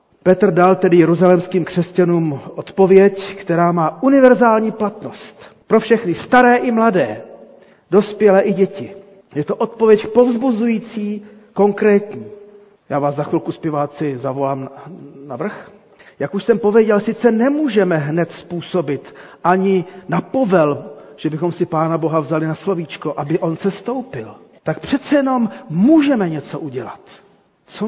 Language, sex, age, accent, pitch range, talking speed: Czech, male, 40-59, native, 175-225 Hz, 135 wpm